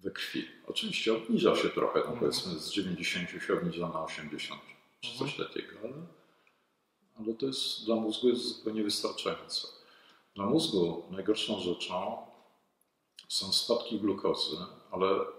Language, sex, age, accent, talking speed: Polish, male, 50-69, native, 135 wpm